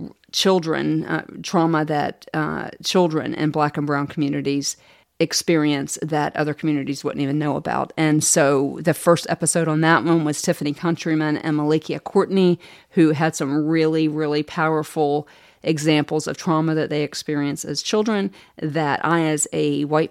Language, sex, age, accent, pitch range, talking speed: English, female, 40-59, American, 150-170 Hz, 155 wpm